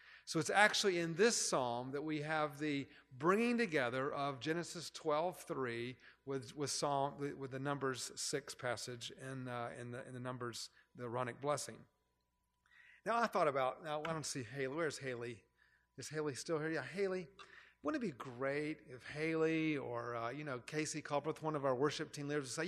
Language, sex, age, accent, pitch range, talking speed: English, male, 40-59, American, 130-165 Hz, 190 wpm